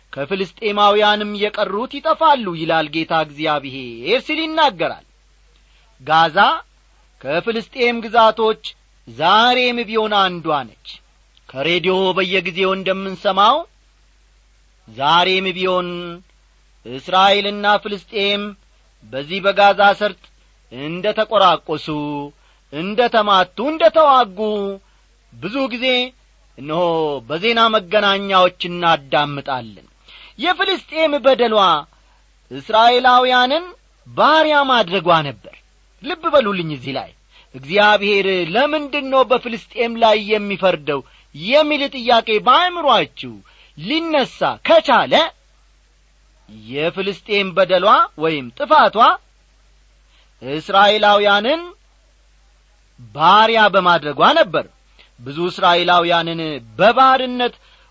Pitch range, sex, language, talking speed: 160-245 Hz, male, Amharic, 70 wpm